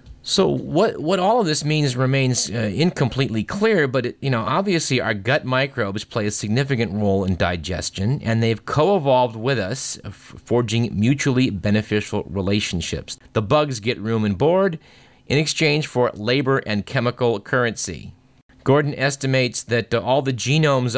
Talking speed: 155 wpm